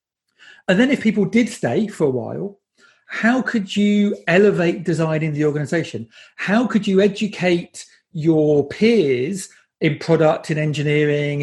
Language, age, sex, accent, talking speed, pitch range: English, 40-59, male, British, 140 wpm, 150-190 Hz